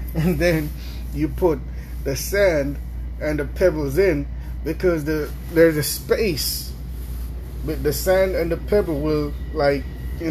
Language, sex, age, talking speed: English, male, 30-49, 140 wpm